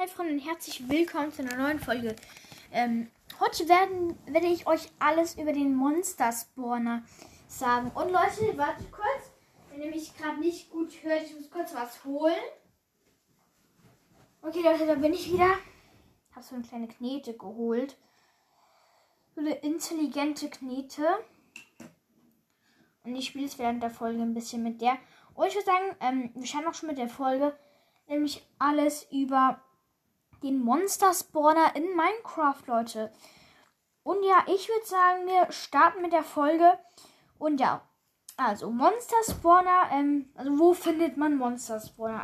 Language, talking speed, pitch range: German, 145 wpm, 260-340 Hz